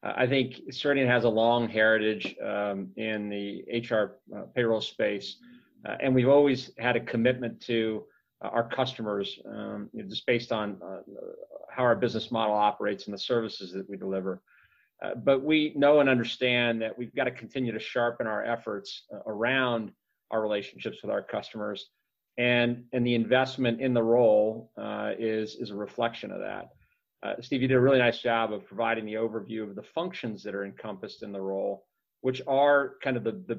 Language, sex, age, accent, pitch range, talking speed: English, male, 40-59, American, 110-130 Hz, 185 wpm